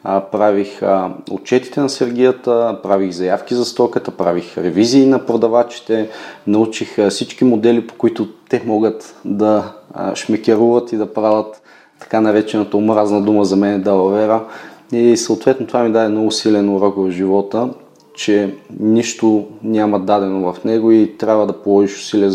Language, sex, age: Bulgarian, male, 30-49